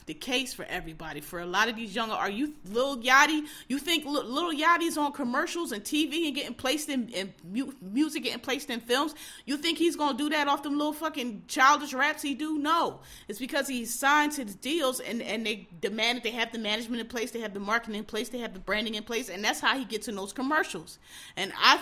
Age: 30-49